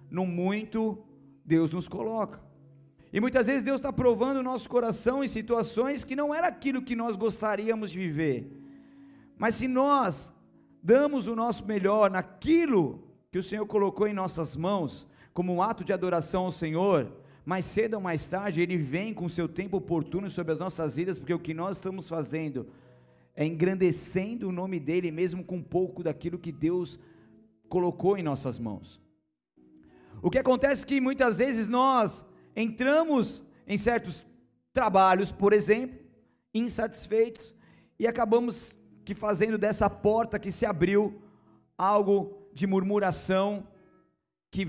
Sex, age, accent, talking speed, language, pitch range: male, 50-69, Brazilian, 150 wpm, Portuguese, 170-225 Hz